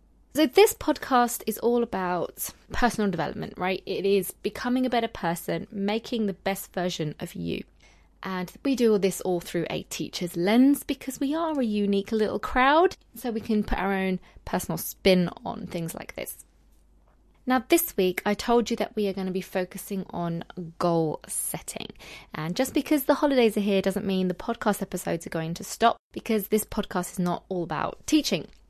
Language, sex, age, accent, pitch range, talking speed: English, female, 20-39, British, 180-235 Hz, 190 wpm